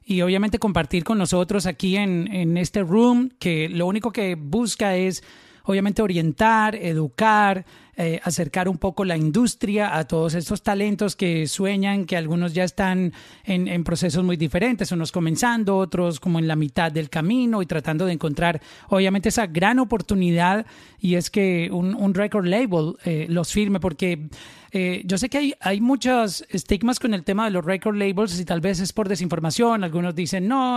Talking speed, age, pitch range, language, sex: 180 wpm, 30-49, 175-215 Hz, Spanish, male